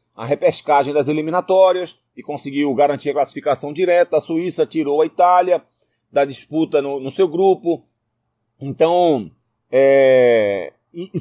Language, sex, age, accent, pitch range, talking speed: Portuguese, male, 30-49, Brazilian, 150-200 Hz, 130 wpm